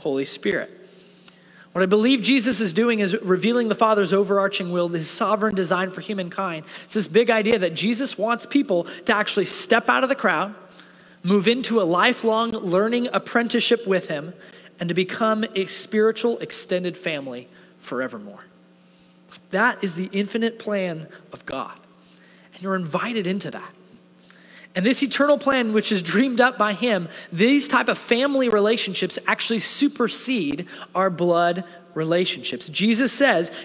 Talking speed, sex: 150 wpm, male